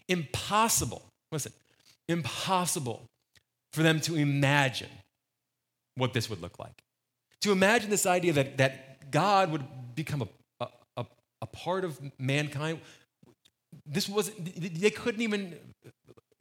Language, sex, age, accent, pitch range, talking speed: English, male, 30-49, American, 125-180 Hz, 120 wpm